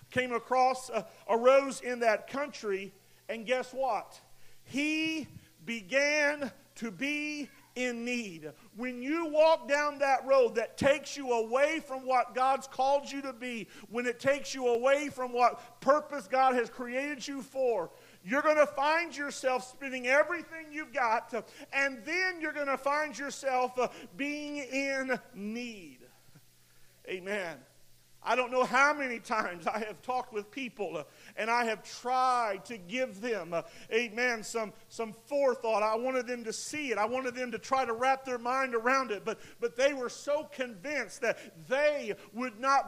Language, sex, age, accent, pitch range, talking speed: English, male, 50-69, American, 230-280 Hz, 160 wpm